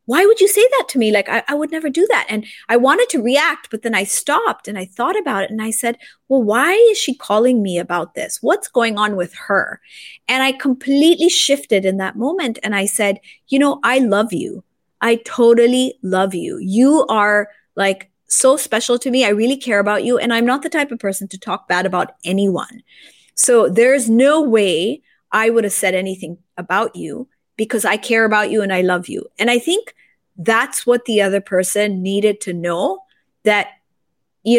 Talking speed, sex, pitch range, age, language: 210 wpm, female, 195-255 Hz, 30-49, English